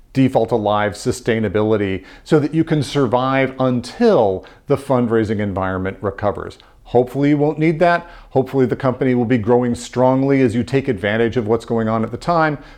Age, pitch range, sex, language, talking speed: 40-59, 115-150 Hz, male, English, 170 wpm